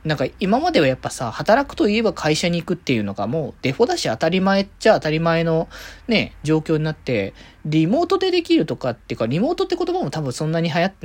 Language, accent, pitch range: Japanese, native, 130-210 Hz